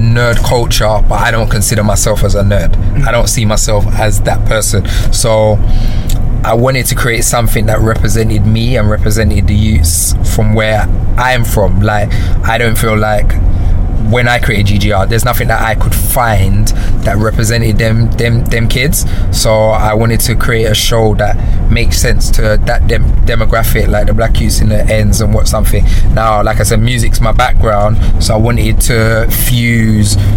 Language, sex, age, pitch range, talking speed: English, male, 20-39, 105-115 Hz, 180 wpm